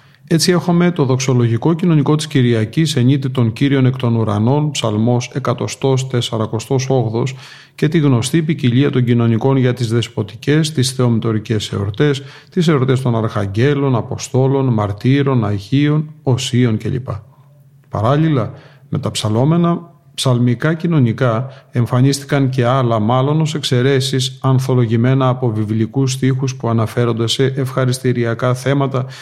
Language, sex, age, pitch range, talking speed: Greek, male, 40-59, 120-140 Hz, 115 wpm